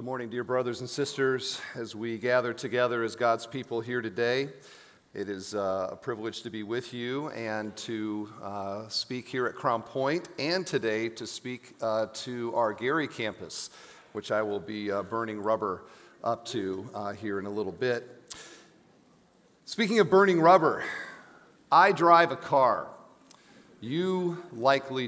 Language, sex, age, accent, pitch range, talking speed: English, male, 40-59, American, 110-160 Hz, 145 wpm